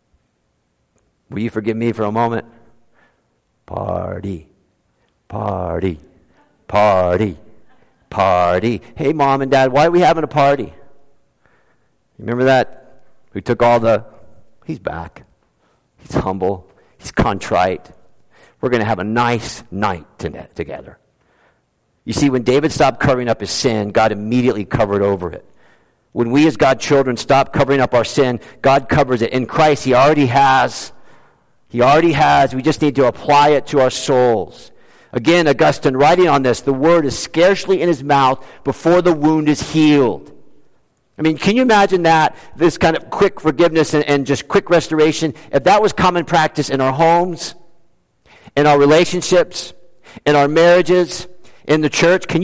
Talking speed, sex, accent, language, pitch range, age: 155 wpm, male, American, English, 115-165 Hz, 50-69